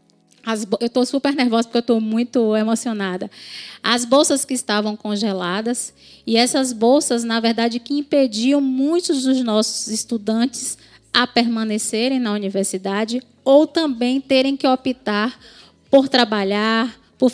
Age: 20-39